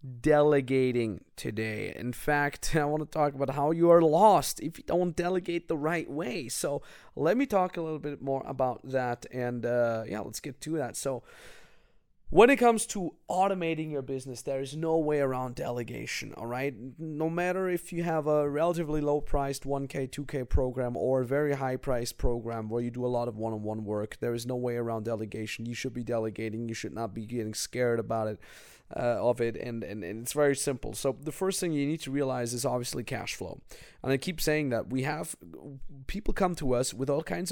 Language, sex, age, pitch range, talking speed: English, male, 30-49, 120-160 Hz, 210 wpm